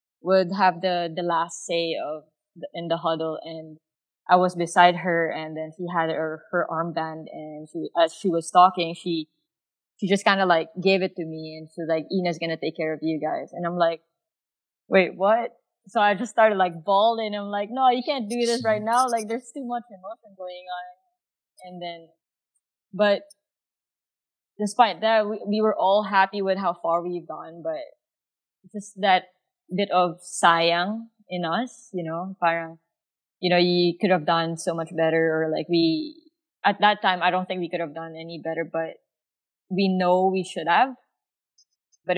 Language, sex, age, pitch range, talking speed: English, female, 20-39, 165-205 Hz, 190 wpm